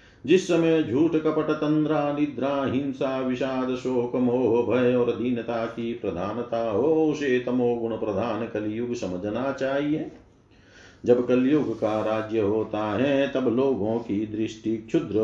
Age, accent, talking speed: 50-69, native, 135 wpm